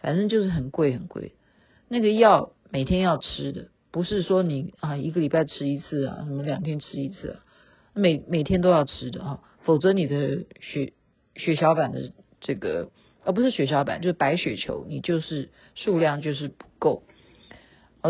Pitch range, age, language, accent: 145-195 Hz, 50-69, Chinese, native